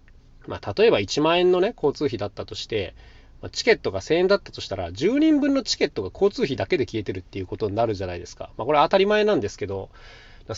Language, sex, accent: Japanese, male, native